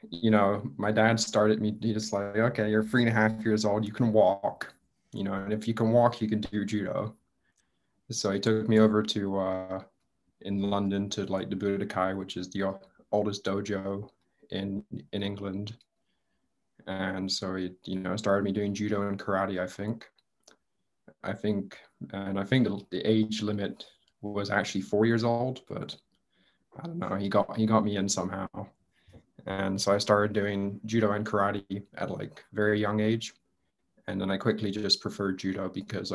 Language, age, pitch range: Spanish, 20-39, 95-110 Hz